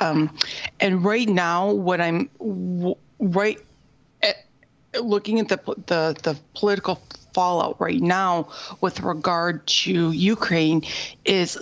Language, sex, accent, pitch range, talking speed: English, female, American, 170-200 Hz, 120 wpm